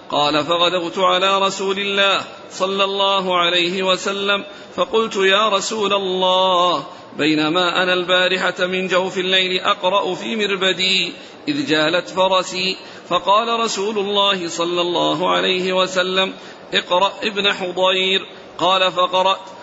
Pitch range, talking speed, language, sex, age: 180-200 Hz, 115 wpm, Arabic, male, 40-59